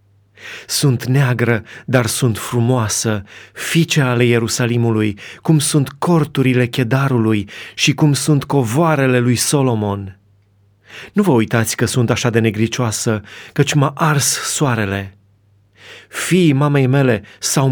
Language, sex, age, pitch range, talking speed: Romanian, male, 30-49, 105-140 Hz, 115 wpm